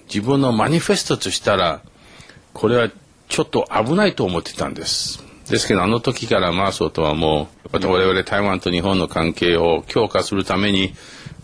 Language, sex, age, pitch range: Japanese, male, 50-69, 85-115 Hz